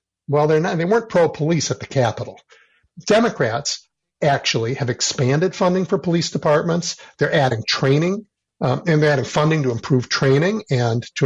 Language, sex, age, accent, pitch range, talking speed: English, male, 50-69, American, 125-155 Hz, 165 wpm